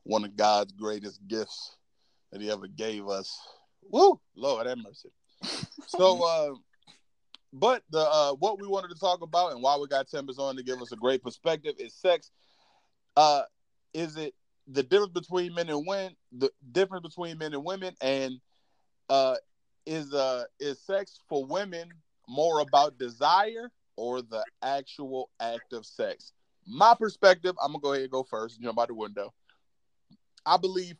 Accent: American